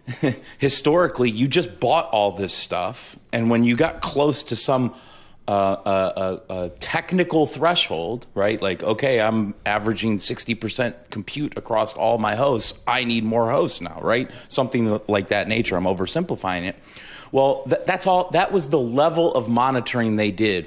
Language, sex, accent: English, male, American